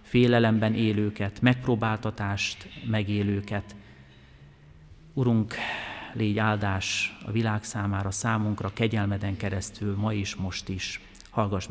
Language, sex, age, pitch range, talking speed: Hungarian, male, 30-49, 105-130 Hz, 90 wpm